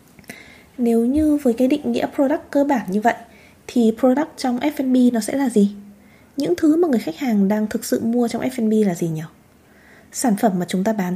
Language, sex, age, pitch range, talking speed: Vietnamese, female, 20-39, 200-255 Hz, 215 wpm